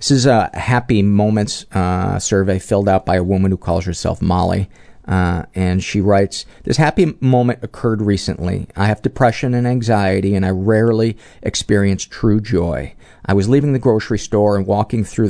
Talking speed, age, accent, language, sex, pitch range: 175 wpm, 40-59, American, English, male, 95-115 Hz